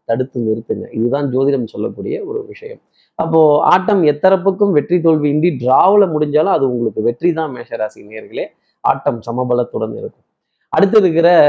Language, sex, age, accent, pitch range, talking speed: Tamil, male, 30-49, native, 125-175 Hz, 125 wpm